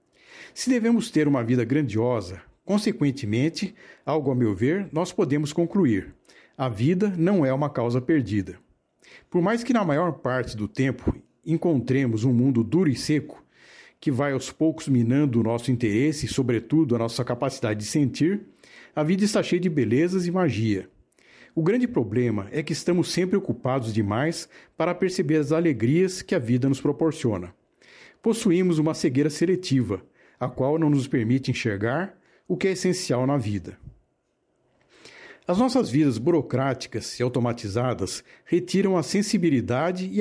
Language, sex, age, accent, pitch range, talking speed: Portuguese, male, 60-79, Brazilian, 125-175 Hz, 150 wpm